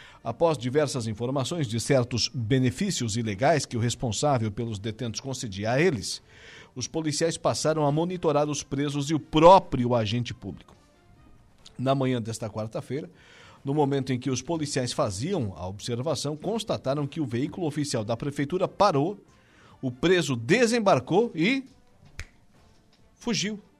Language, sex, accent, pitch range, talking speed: Portuguese, male, Brazilian, 120-160 Hz, 135 wpm